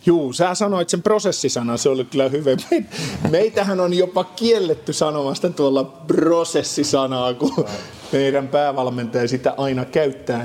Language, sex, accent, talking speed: Finnish, male, native, 125 wpm